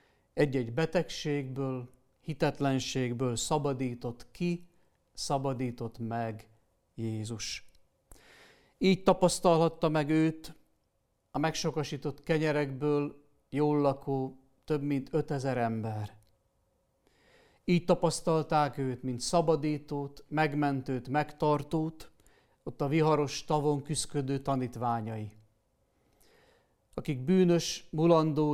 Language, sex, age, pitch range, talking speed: Hungarian, male, 50-69, 120-155 Hz, 80 wpm